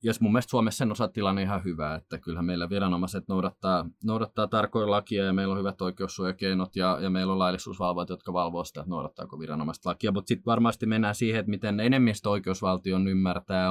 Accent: native